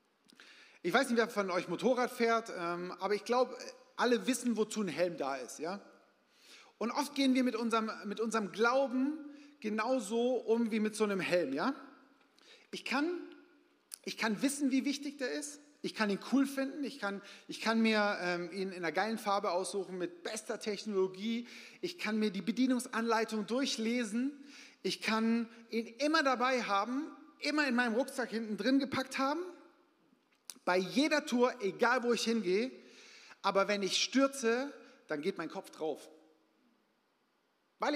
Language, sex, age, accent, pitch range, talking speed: German, male, 40-59, German, 205-265 Hz, 155 wpm